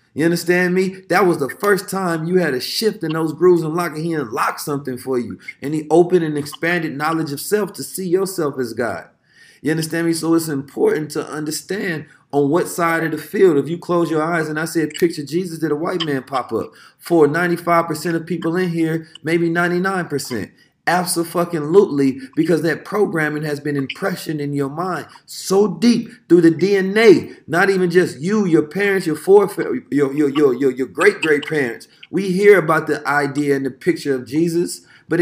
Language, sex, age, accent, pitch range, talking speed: English, male, 30-49, American, 140-175 Hz, 205 wpm